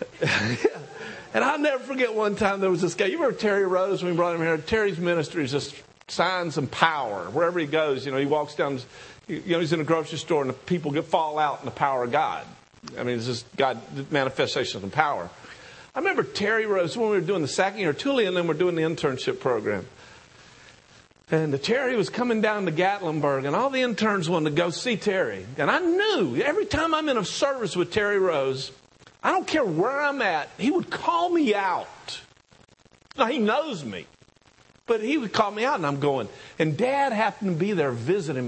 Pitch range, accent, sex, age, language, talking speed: 150-225 Hz, American, male, 50-69, English, 220 wpm